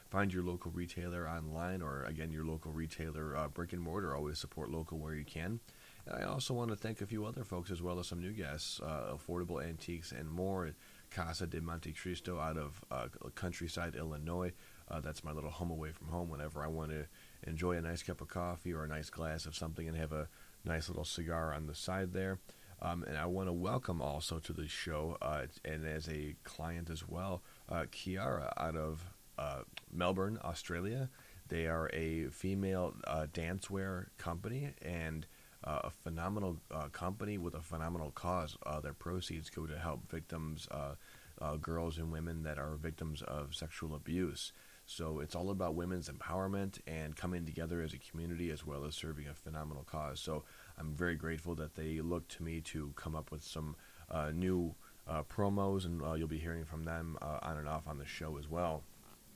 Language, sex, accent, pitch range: English, male, American, 80-90 Hz